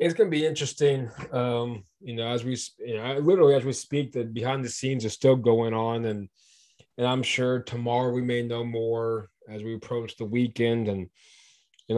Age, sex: 20-39, male